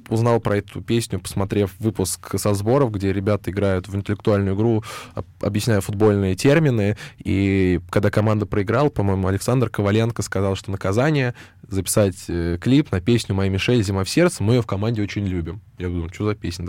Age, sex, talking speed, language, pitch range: 20-39, male, 170 wpm, Russian, 95-110 Hz